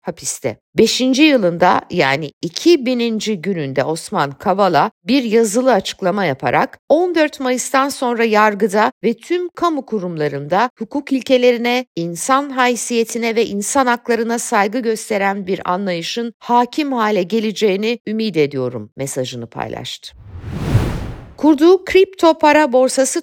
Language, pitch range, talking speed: Turkish, 185-265 Hz, 110 wpm